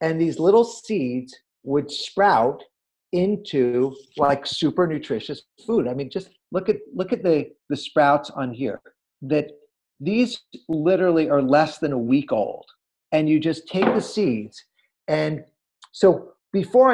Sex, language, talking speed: male, English, 145 wpm